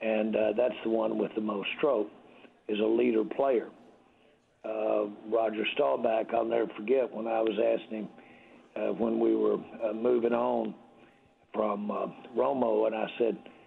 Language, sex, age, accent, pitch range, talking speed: English, male, 60-79, American, 110-120 Hz, 165 wpm